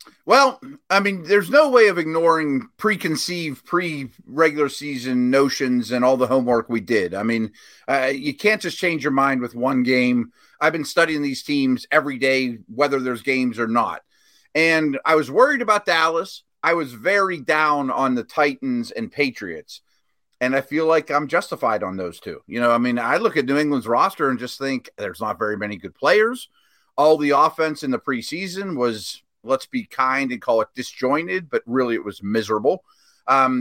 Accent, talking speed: American, 185 wpm